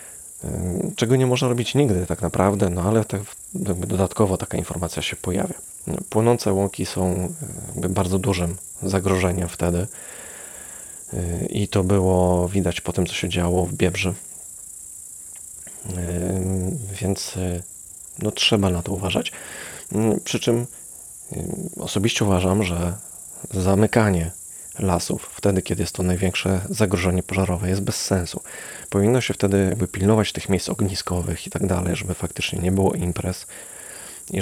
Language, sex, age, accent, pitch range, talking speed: Polish, male, 30-49, native, 90-100 Hz, 125 wpm